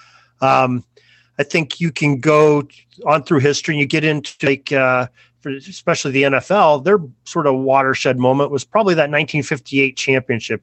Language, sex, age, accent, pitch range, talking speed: English, male, 30-49, American, 120-145 Hz, 165 wpm